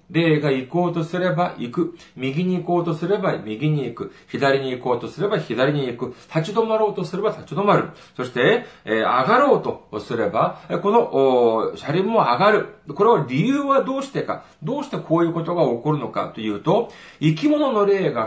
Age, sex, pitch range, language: 40-59, male, 130-200 Hz, Japanese